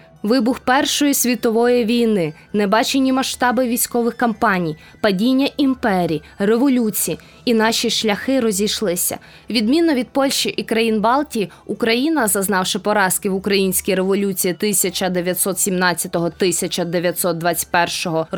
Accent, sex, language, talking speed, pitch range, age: native, female, Ukrainian, 90 wpm, 190-235 Hz, 20-39